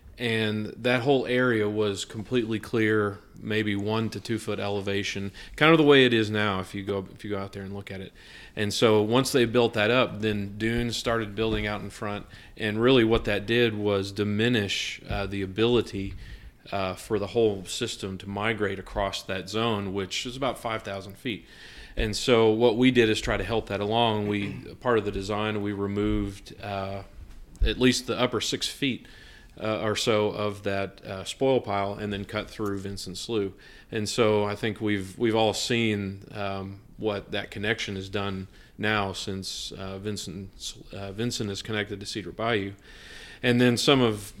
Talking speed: 190 wpm